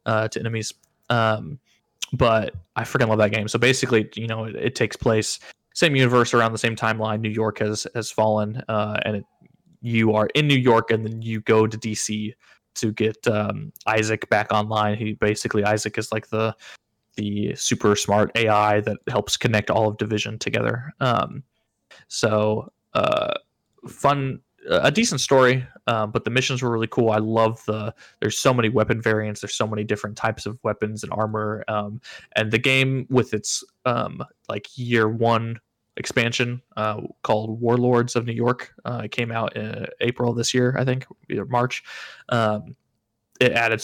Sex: male